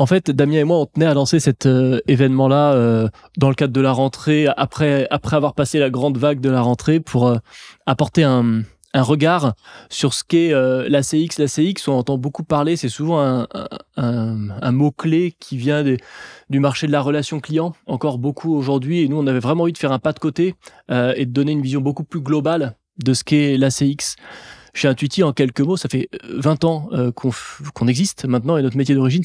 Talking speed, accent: 220 wpm, French